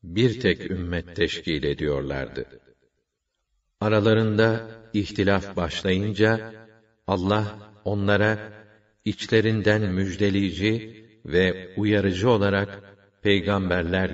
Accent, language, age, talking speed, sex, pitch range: native, Turkish, 50-69, 70 wpm, male, 95-110 Hz